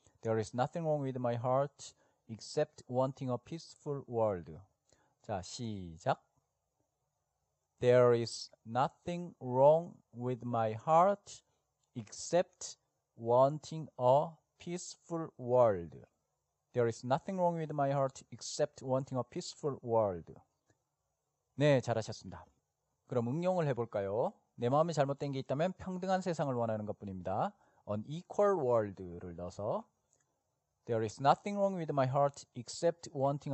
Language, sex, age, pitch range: Korean, male, 40-59, 115-160 Hz